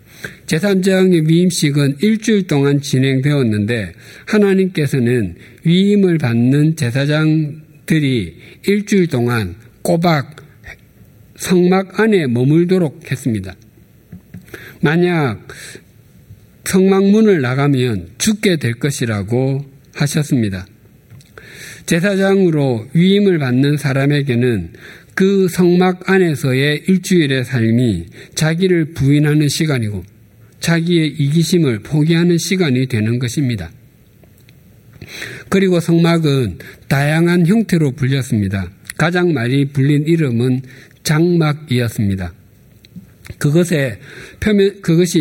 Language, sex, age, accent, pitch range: Korean, male, 60-79, native, 125-175 Hz